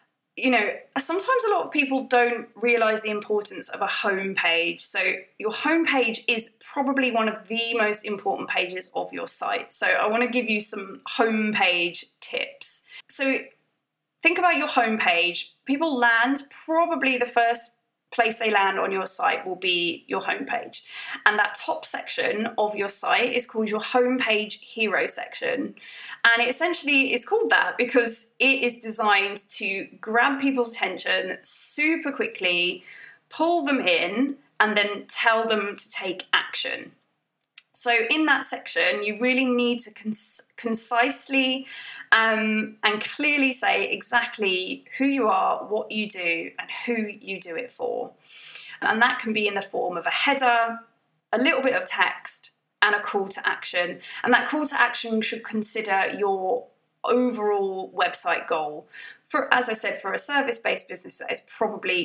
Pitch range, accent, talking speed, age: 210-260 Hz, British, 165 wpm, 20-39